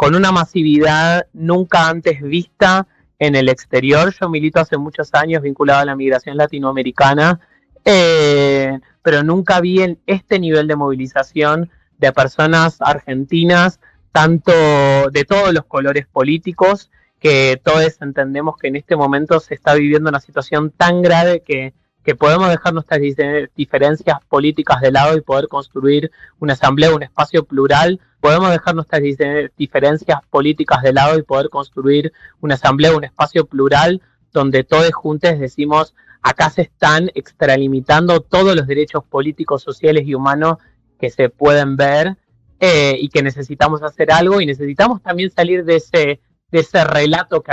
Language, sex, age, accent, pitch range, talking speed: Spanish, male, 30-49, Argentinian, 140-165 Hz, 150 wpm